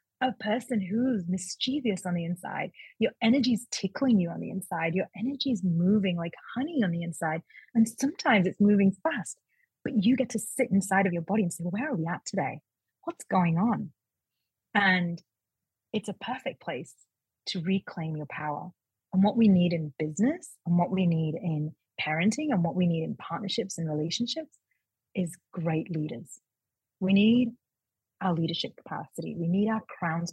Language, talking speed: English, 175 wpm